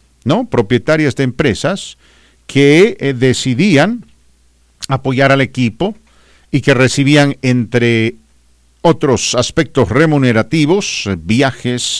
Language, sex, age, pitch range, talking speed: English, male, 50-69, 95-135 Hz, 95 wpm